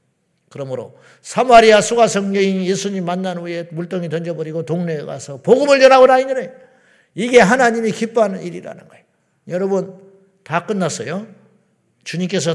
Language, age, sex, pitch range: Korean, 50-69, male, 150-215 Hz